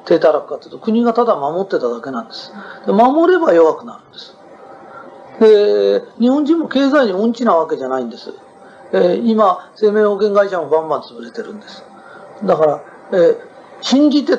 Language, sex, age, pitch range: Japanese, male, 40-59, 195-275 Hz